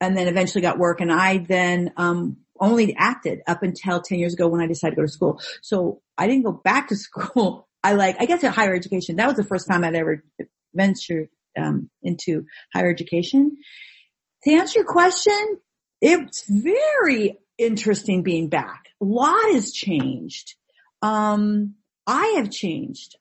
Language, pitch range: English, 175-220 Hz